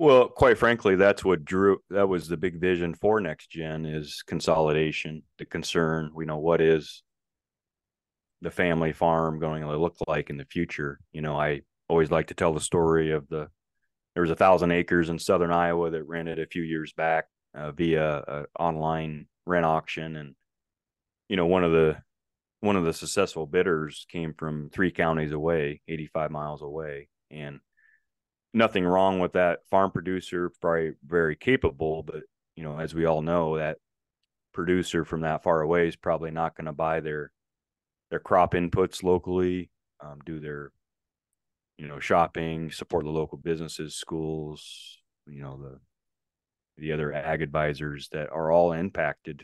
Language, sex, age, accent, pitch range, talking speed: English, male, 30-49, American, 75-85 Hz, 165 wpm